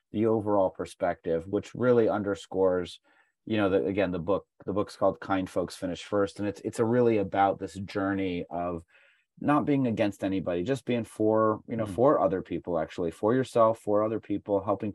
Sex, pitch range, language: male, 95-115 Hz, English